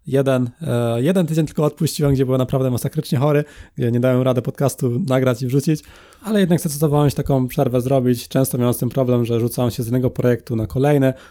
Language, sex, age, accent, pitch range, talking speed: Polish, male, 20-39, native, 120-150 Hz, 200 wpm